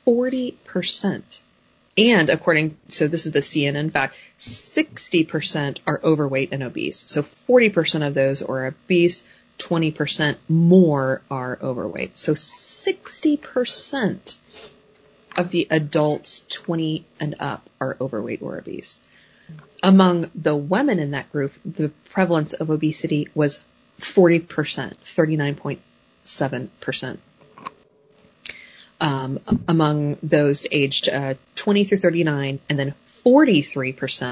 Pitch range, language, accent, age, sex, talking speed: 135-175 Hz, English, American, 30-49, female, 100 wpm